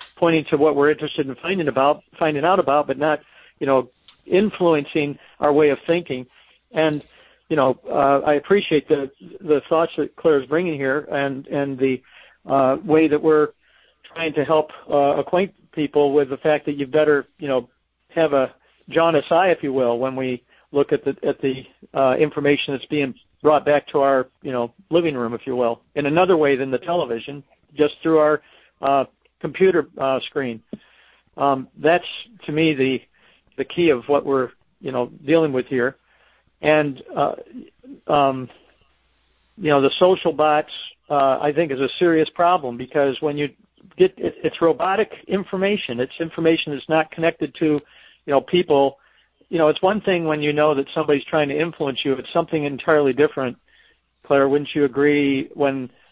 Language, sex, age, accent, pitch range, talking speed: English, male, 50-69, American, 135-160 Hz, 180 wpm